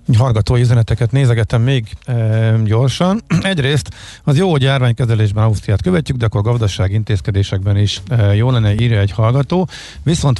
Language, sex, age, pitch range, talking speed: Hungarian, male, 50-69, 110-130 Hz, 145 wpm